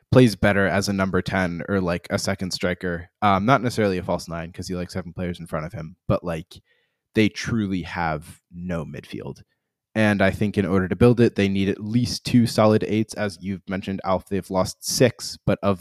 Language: English